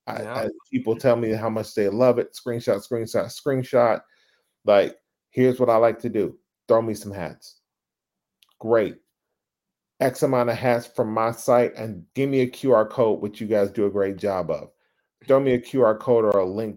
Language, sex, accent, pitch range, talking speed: English, male, American, 105-135 Hz, 195 wpm